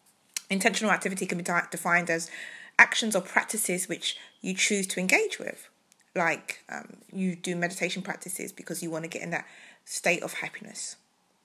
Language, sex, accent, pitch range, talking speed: English, female, British, 175-225 Hz, 160 wpm